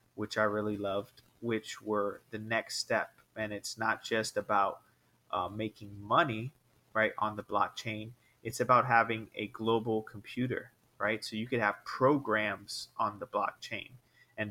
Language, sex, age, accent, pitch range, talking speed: English, male, 30-49, American, 110-125 Hz, 155 wpm